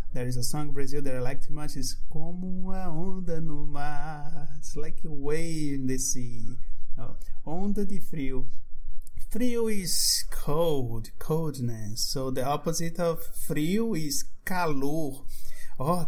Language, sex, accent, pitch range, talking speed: English, male, Brazilian, 130-185 Hz, 145 wpm